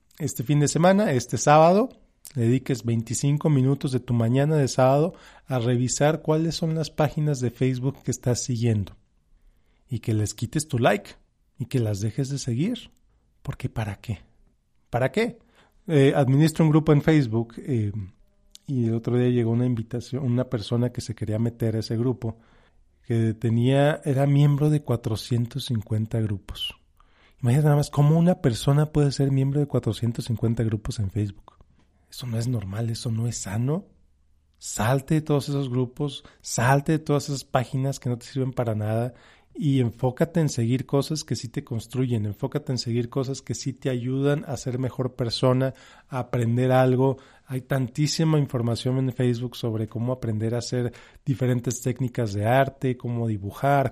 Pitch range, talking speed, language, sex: 115-140 Hz, 165 wpm, Spanish, male